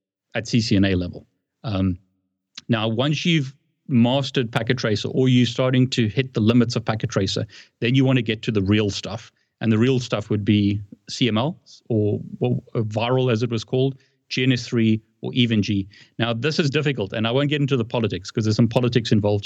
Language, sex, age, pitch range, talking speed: English, male, 30-49, 105-130 Hz, 190 wpm